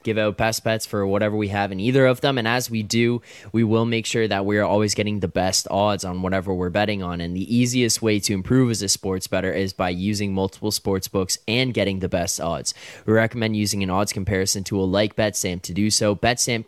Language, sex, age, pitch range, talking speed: English, male, 10-29, 95-115 Hz, 240 wpm